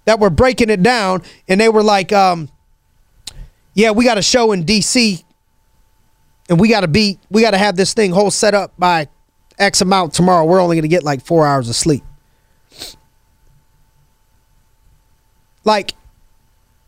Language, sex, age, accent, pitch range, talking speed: English, male, 20-39, American, 175-245 Hz, 165 wpm